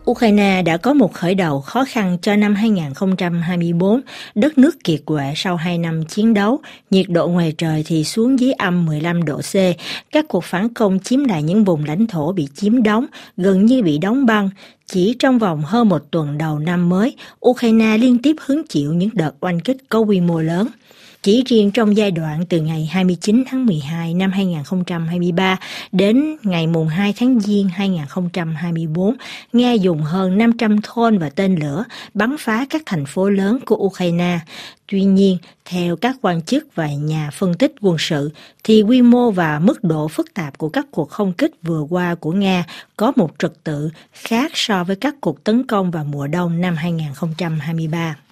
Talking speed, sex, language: 185 wpm, female, Vietnamese